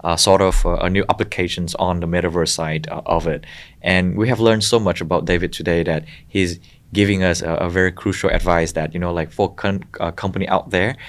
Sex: male